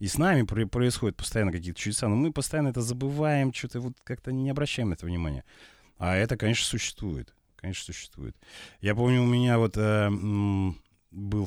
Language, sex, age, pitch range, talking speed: Russian, male, 30-49, 95-125 Hz, 175 wpm